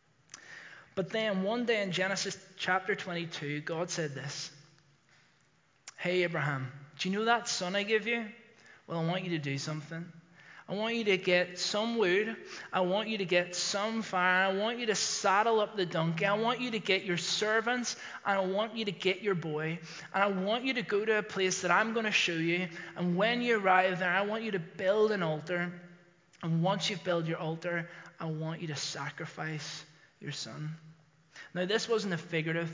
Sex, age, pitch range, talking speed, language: male, 20-39, 160-195 Hz, 200 wpm, English